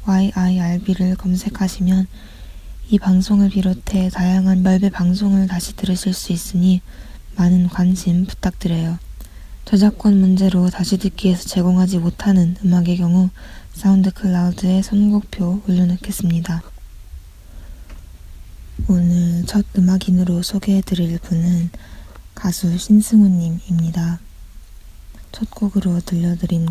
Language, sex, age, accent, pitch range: Korean, female, 20-39, native, 170-190 Hz